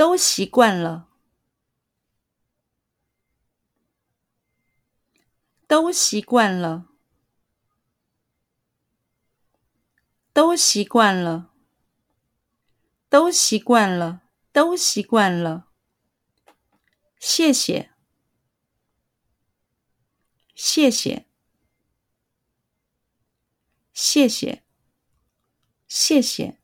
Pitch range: 180-270 Hz